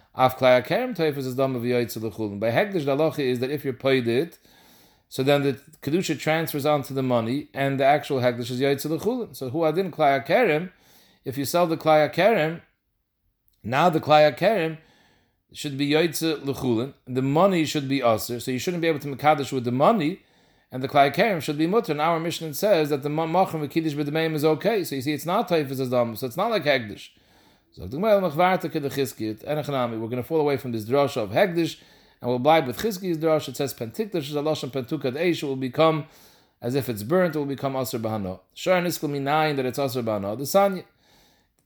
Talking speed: 195 wpm